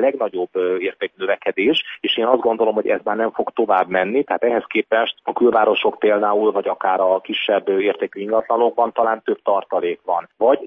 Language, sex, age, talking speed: Hungarian, male, 30-49, 175 wpm